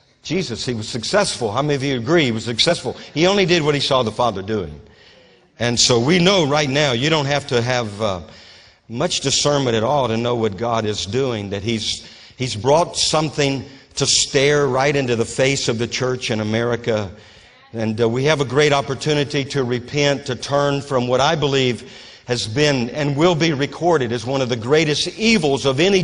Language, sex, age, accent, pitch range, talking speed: English, male, 50-69, American, 115-145 Hz, 205 wpm